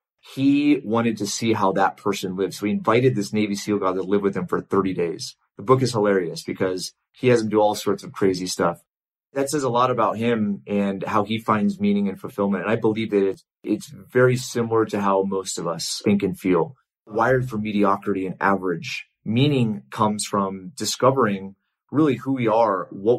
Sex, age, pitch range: male, 30-49, 95-120 Hz